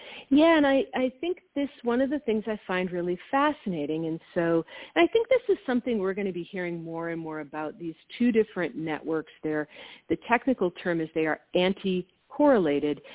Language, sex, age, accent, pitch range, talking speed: English, female, 50-69, American, 155-235 Hz, 195 wpm